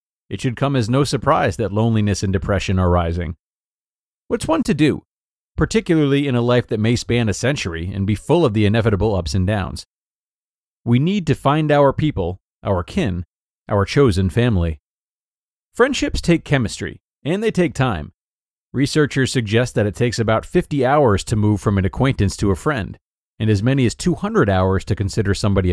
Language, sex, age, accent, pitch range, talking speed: English, male, 30-49, American, 100-135 Hz, 180 wpm